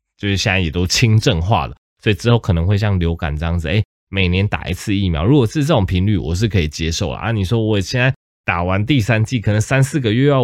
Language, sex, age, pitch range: Chinese, male, 20-39, 85-110 Hz